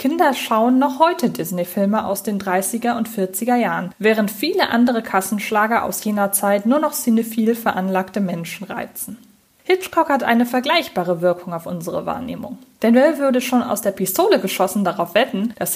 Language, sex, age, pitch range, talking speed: German, female, 20-39, 200-255 Hz, 160 wpm